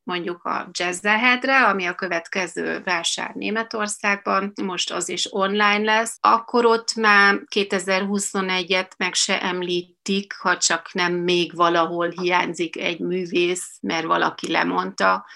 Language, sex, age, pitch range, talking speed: Hungarian, female, 30-49, 175-200 Hz, 120 wpm